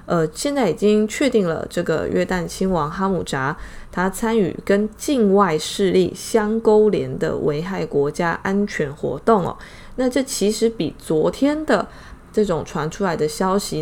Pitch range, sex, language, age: 175-225 Hz, female, Chinese, 20-39